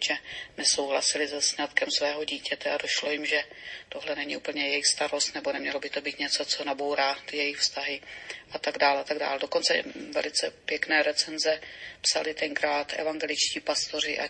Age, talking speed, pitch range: 30-49, 170 wpm, 145-150 Hz